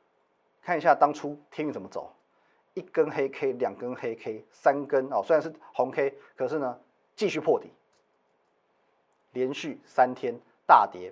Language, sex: Chinese, male